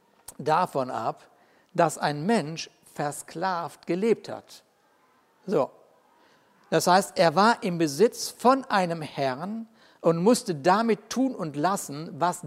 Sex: male